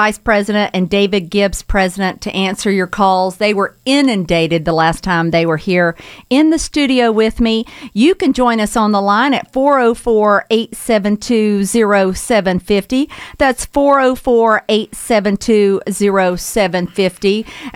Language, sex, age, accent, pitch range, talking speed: English, female, 50-69, American, 190-245 Hz, 120 wpm